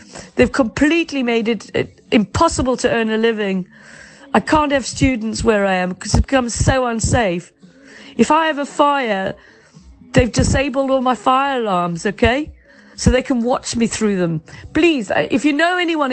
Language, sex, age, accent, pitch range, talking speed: English, female, 40-59, British, 210-270 Hz, 165 wpm